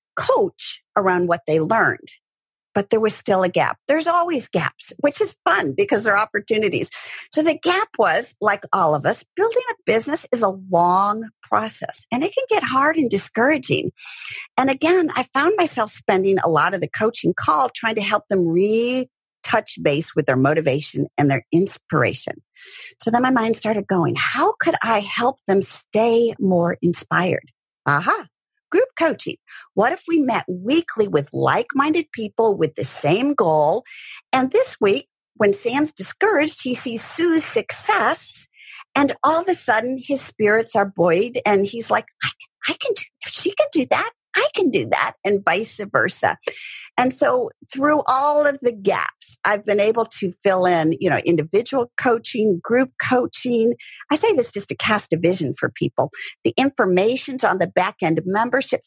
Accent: American